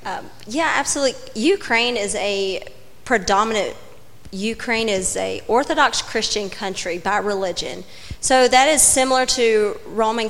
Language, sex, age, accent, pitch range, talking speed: English, female, 30-49, American, 195-240 Hz, 120 wpm